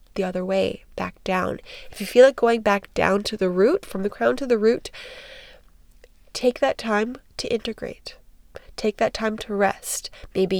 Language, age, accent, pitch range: English, 10-29, American, 190-220 Hz